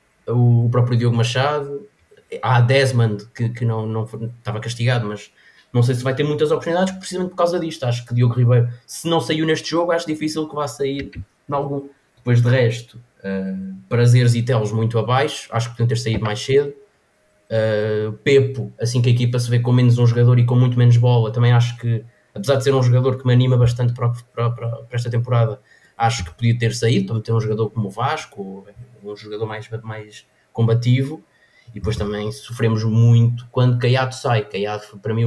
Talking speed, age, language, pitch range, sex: 205 wpm, 20-39, Portuguese, 115-130 Hz, male